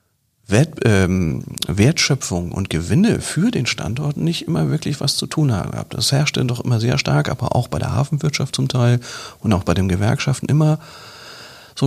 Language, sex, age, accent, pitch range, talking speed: German, male, 40-59, German, 110-140 Hz, 180 wpm